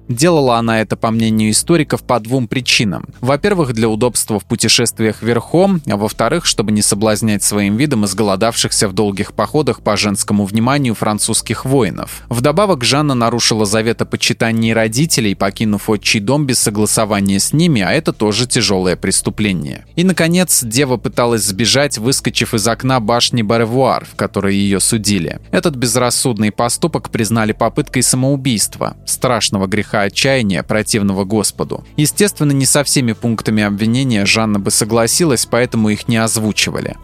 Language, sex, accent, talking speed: Russian, male, native, 145 wpm